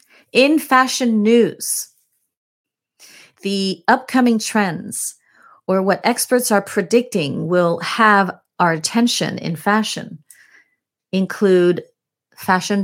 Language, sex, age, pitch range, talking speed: English, female, 30-49, 165-225 Hz, 90 wpm